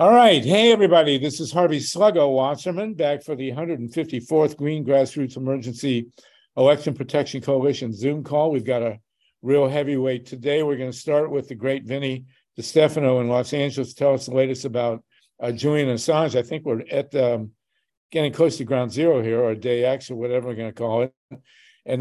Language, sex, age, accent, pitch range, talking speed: English, male, 60-79, American, 120-145 Hz, 190 wpm